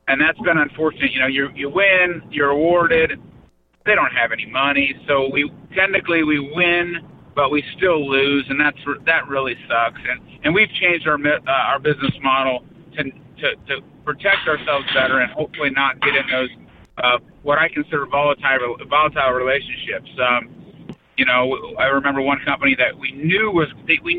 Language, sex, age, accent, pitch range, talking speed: English, male, 50-69, American, 130-155 Hz, 175 wpm